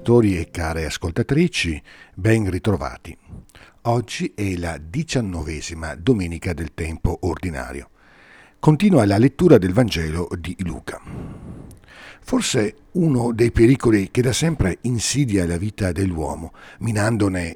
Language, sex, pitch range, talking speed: Italian, male, 85-125 Hz, 110 wpm